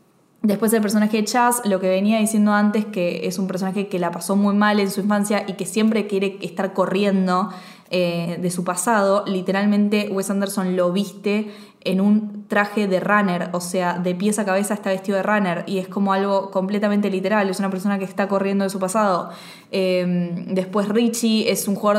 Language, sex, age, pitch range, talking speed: Spanish, female, 20-39, 185-210 Hz, 200 wpm